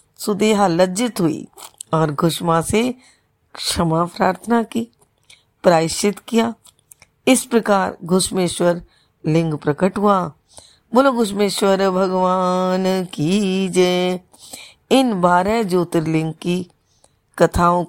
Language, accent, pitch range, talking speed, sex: Hindi, native, 160-195 Hz, 85 wpm, female